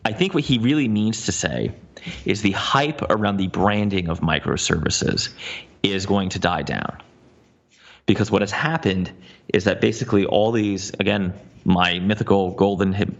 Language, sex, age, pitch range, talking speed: English, male, 30-49, 95-120 Hz, 160 wpm